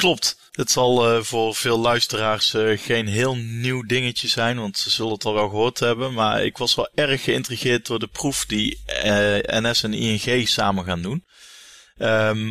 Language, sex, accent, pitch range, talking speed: Dutch, male, Dutch, 105-130 Hz, 185 wpm